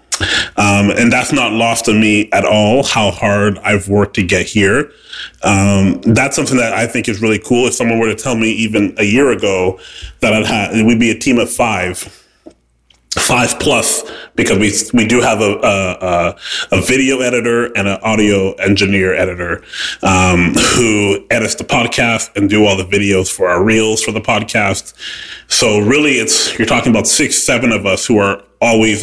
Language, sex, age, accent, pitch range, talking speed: English, male, 30-49, American, 100-115 Hz, 180 wpm